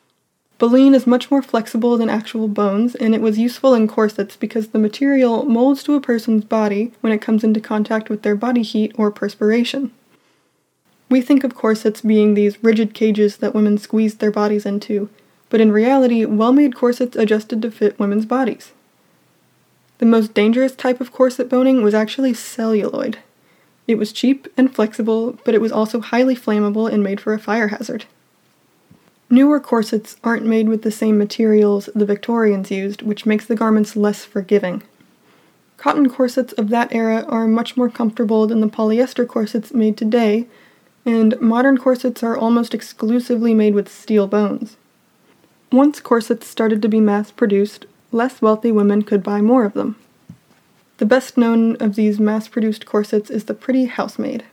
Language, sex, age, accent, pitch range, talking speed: English, female, 20-39, American, 215-245 Hz, 165 wpm